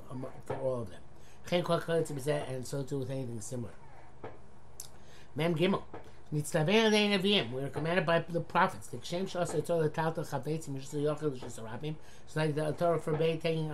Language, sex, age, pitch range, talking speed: English, male, 60-79, 140-175 Hz, 110 wpm